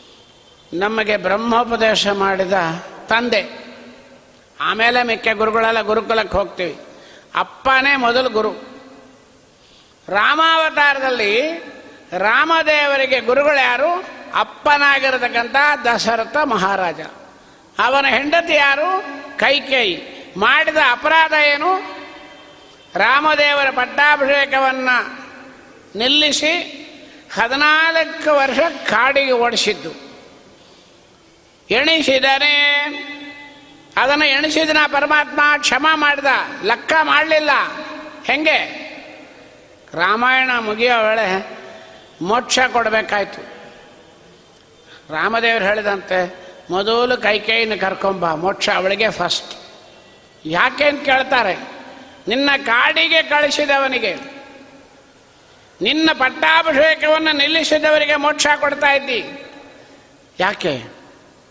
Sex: male